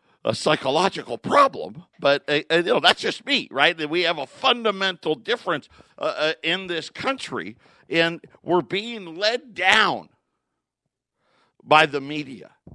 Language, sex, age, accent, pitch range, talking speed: English, male, 50-69, American, 125-160 Hz, 130 wpm